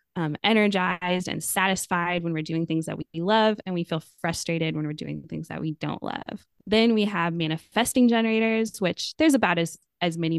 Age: 20-39